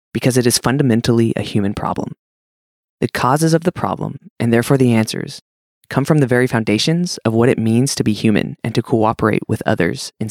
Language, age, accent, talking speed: English, 20-39, American, 200 wpm